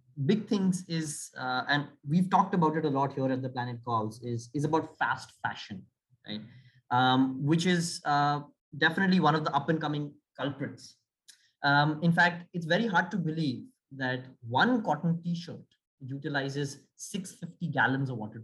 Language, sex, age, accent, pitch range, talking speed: English, male, 20-39, Indian, 135-180 Hz, 165 wpm